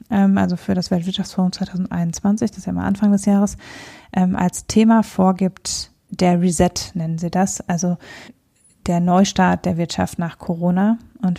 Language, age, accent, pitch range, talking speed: German, 20-39, German, 180-200 Hz, 150 wpm